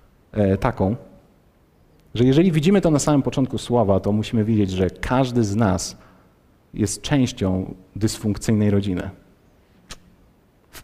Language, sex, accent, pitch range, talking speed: Polish, male, native, 105-130 Hz, 115 wpm